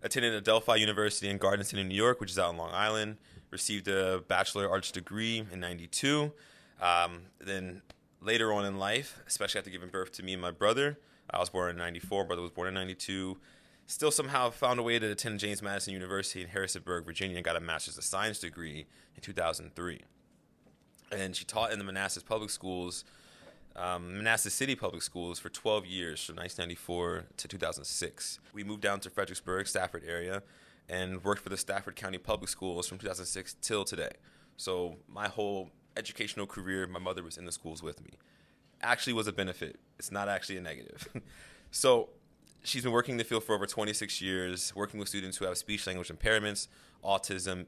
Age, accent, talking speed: 20-39, American, 190 wpm